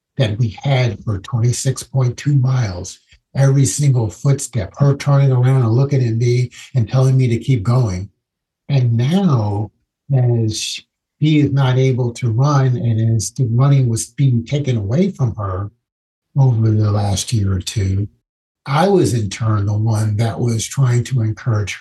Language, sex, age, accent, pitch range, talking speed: English, male, 60-79, American, 100-125 Hz, 160 wpm